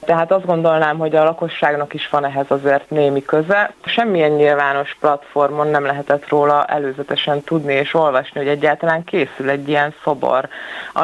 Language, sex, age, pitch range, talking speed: Hungarian, female, 20-39, 145-165 Hz, 160 wpm